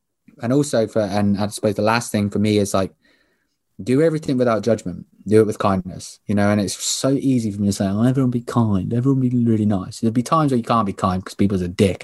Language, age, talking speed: English, 20-39, 250 wpm